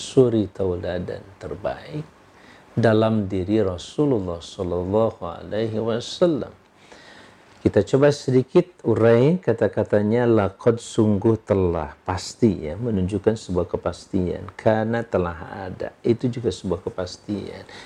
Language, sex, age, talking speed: Indonesian, male, 50-69, 95 wpm